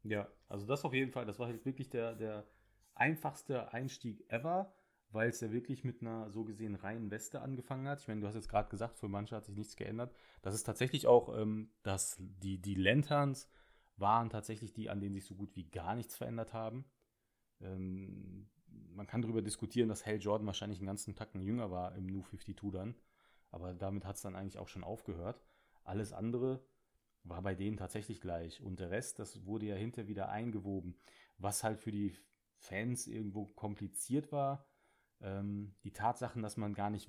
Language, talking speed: German, 195 wpm